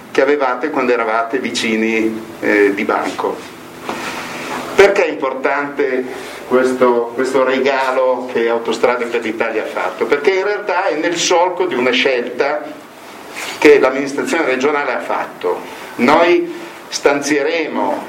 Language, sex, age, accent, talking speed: Italian, male, 50-69, native, 120 wpm